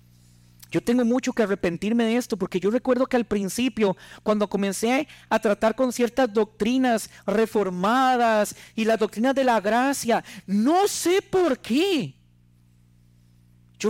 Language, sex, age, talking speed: Spanish, male, 40-59, 140 wpm